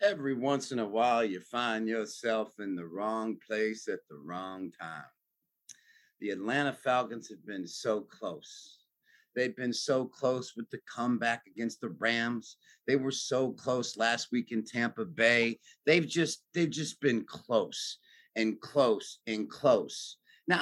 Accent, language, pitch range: American, English, 115-145 Hz